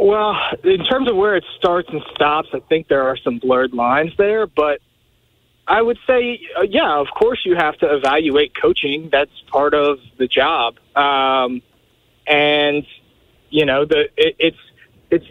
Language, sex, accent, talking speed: English, male, American, 170 wpm